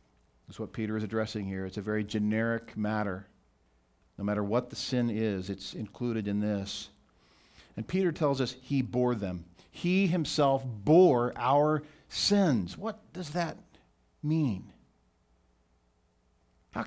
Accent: American